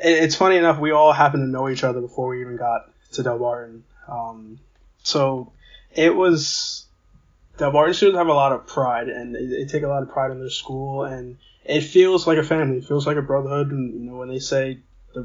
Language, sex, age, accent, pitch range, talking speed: English, male, 20-39, American, 120-145 Hz, 225 wpm